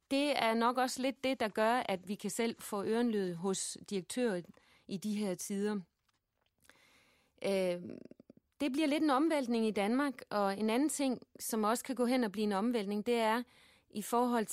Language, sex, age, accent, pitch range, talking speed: Danish, female, 30-49, native, 185-230 Hz, 185 wpm